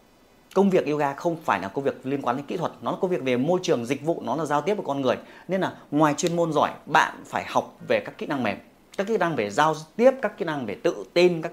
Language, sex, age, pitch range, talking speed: Vietnamese, male, 30-49, 145-230 Hz, 290 wpm